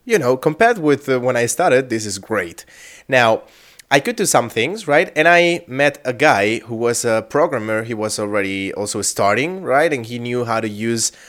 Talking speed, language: 205 wpm, English